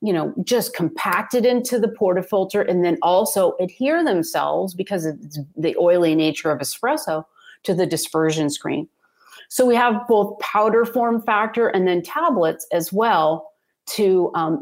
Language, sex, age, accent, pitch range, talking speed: English, female, 30-49, American, 165-210 Hz, 150 wpm